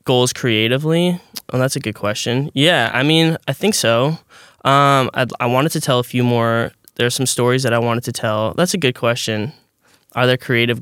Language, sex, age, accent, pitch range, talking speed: English, male, 10-29, American, 110-130 Hz, 210 wpm